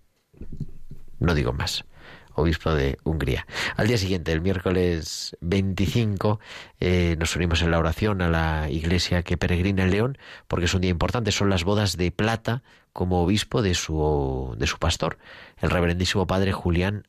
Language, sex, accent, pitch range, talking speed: Spanish, male, Spanish, 80-100 Hz, 160 wpm